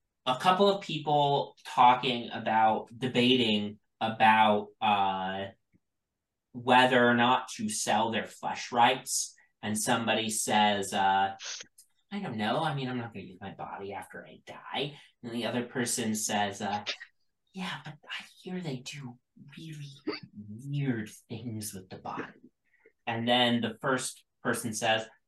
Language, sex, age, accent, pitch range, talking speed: English, male, 20-39, American, 105-130 Hz, 140 wpm